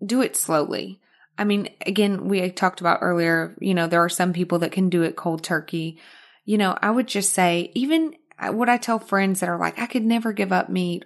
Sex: female